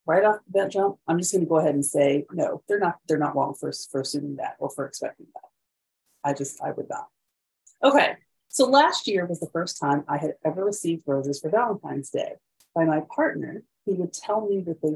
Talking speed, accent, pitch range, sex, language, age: 225 wpm, American, 150-210 Hz, female, English, 30-49